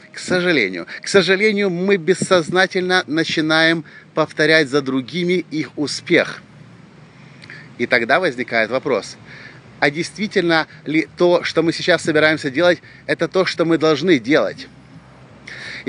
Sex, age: male, 30-49